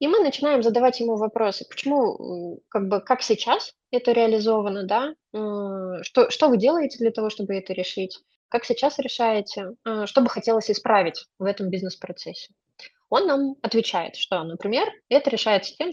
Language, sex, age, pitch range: Russian, female, 20-39, 200-265 Hz